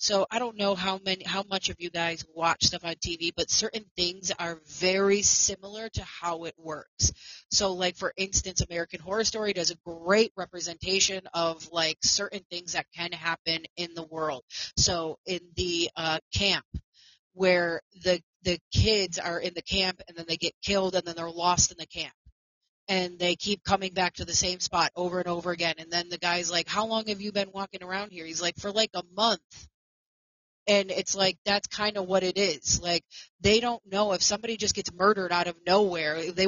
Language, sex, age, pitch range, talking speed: English, female, 30-49, 170-200 Hz, 205 wpm